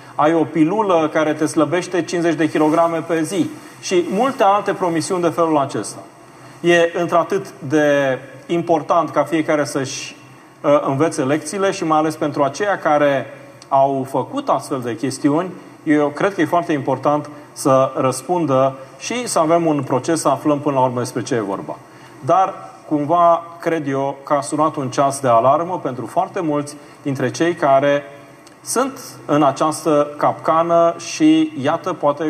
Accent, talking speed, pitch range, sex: native, 160 wpm, 140-170 Hz, male